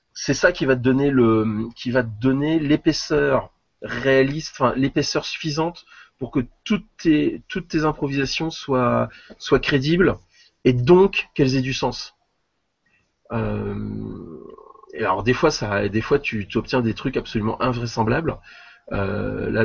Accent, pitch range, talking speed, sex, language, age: French, 115-140 Hz, 145 wpm, male, French, 30-49